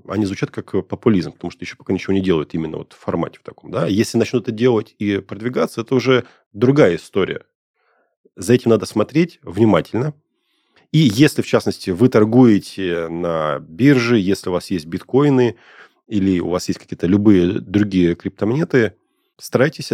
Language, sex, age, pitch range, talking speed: Russian, male, 30-49, 90-120 Hz, 160 wpm